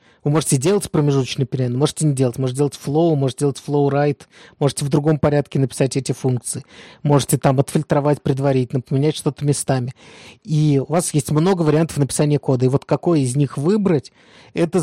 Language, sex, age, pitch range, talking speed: Russian, male, 20-39, 130-155 Hz, 180 wpm